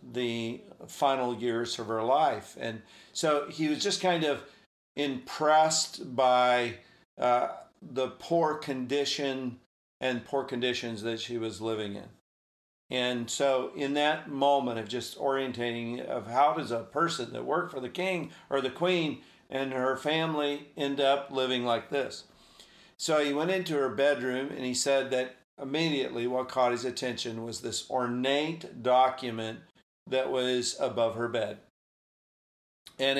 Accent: American